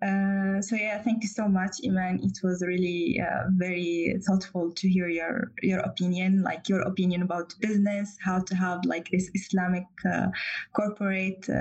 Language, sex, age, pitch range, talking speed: English, female, 20-39, 180-195 Hz, 165 wpm